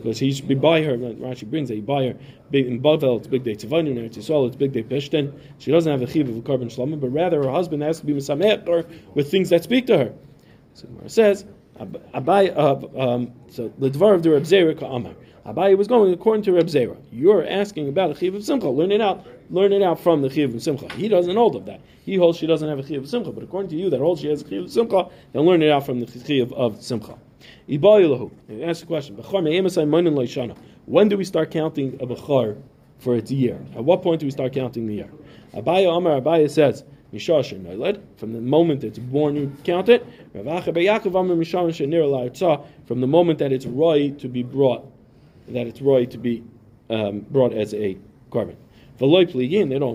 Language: English